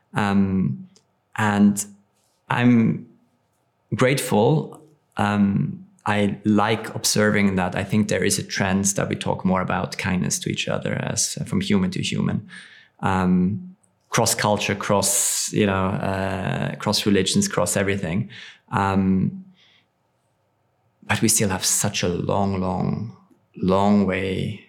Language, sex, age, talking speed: English, male, 20-39, 125 wpm